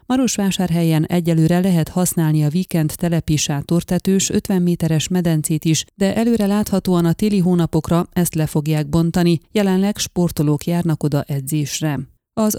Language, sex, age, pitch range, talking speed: Hungarian, female, 30-49, 160-185 Hz, 130 wpm